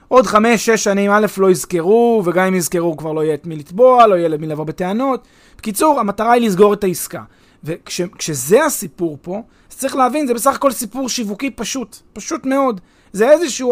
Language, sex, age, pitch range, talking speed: Hebrew, male, 30-49, 160-235 Hz, 190 wpm